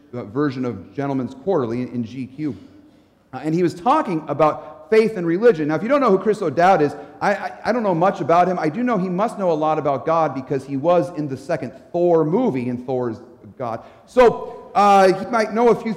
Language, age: English, 40-59